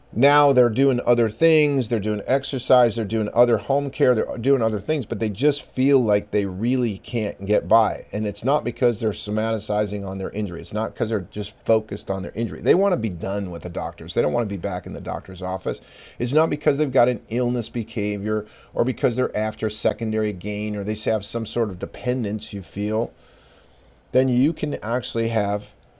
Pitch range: 105-130 Hz